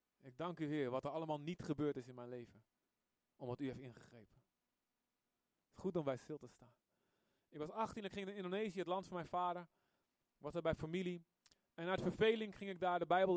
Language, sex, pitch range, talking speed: Dutch, male, 140-195 Hz, 220 wpm